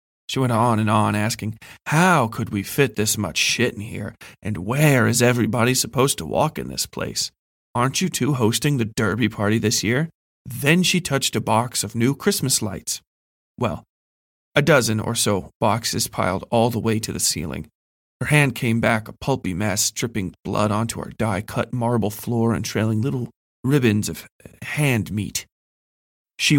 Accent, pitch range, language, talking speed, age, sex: American, 105-130 Hz, English, 175 wpm, 40-59, male